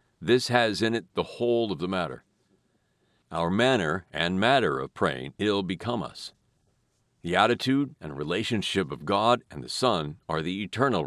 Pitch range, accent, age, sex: 95-125 Hz, American, 50-69, male